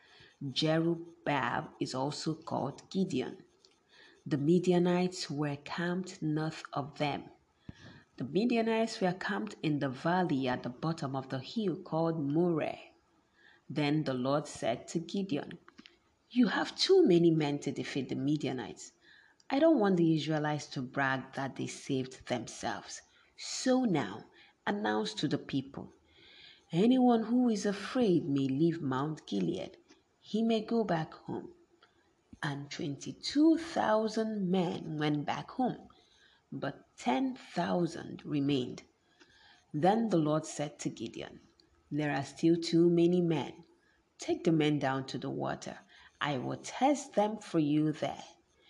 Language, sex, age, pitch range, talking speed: English, female, 40-59, 145-205 Hz, 130 wpm